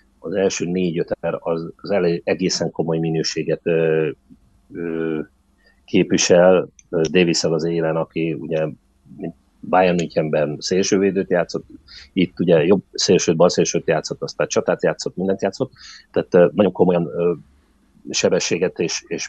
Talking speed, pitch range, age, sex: 130 wpm, 80-105 Hz, 30-49, male